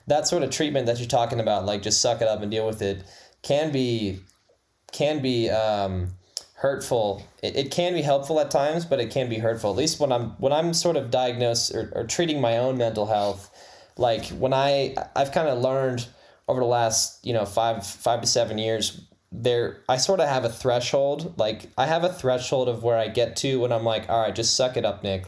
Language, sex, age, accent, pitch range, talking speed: English, male, 10-29, American, 105-130 Hz, 225 wpm